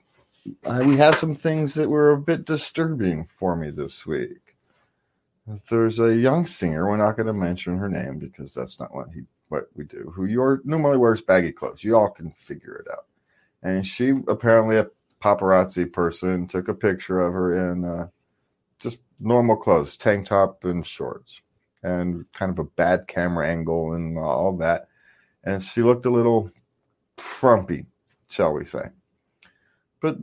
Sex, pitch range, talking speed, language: male, 85-135 Hz, 165 wpm, English